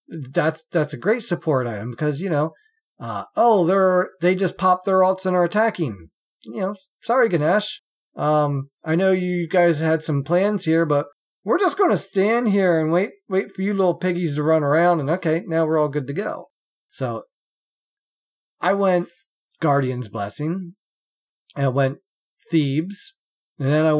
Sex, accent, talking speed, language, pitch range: male, American, 175 wpm, English, 135-175 Hz